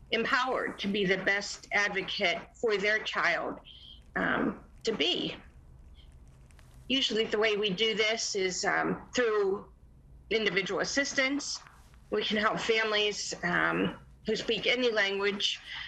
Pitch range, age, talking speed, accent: 190-235 Hz, 40-59, 120 wpm, American